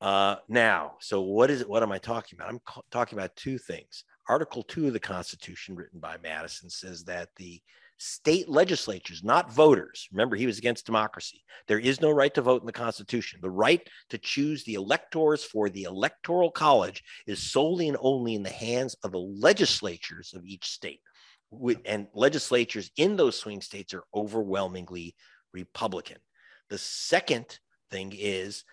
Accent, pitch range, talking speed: American, 100-155 Hz, 170 wpm